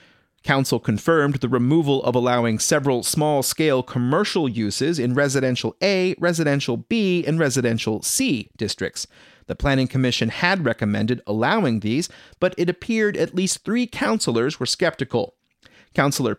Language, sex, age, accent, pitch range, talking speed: English, male, 30-49, American, 120-170 Hz, 130 wpm